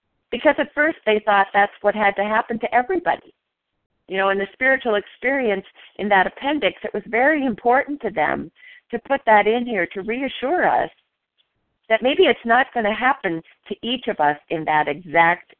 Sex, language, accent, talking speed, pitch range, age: female, English, American, 190 wpm, 155-205 Hz, 50-69